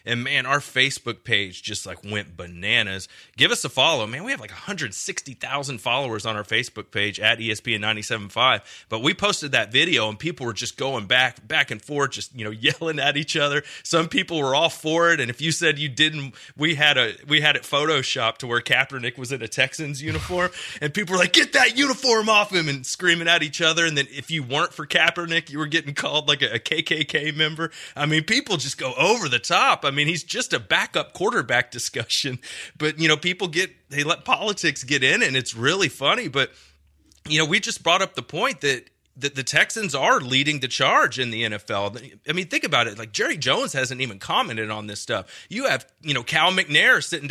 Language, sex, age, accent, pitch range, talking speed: English, male, 30-49, American, 120-160 Hz, 220 wpm